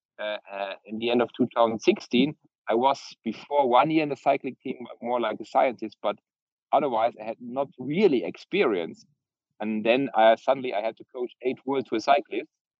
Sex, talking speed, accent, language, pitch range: male, 190 wpm, German, English, 110-135 Hz